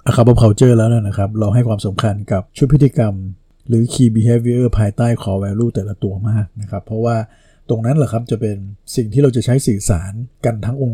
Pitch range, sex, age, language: 105-125 Hz, male, 60-79, Thai